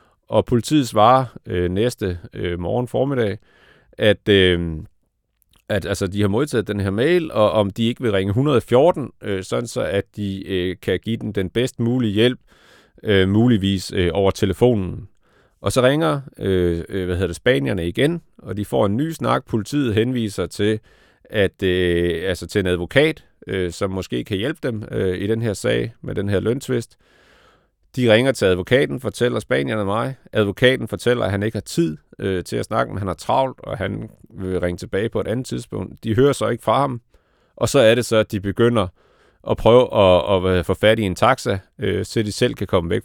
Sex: male